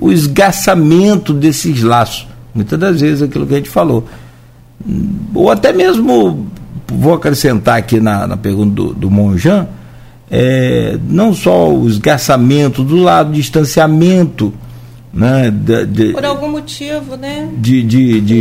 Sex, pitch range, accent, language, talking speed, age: male, 115-170 Hz, Brazilian, Portuguese, 135 wpm, 60-79